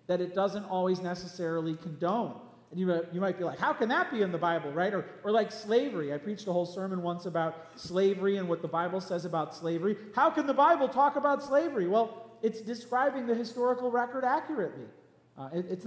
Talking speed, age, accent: 205 wpm, 40-59, American